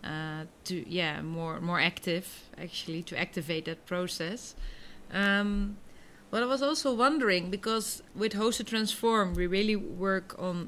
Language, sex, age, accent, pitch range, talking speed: English, female, 30-49, Dutch, 165-195 Hz, 140 wpm